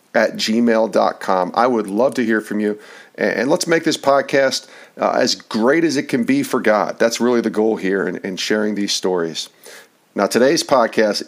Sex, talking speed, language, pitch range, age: male, 190 wpm, English, 105-135 Hz, 50-69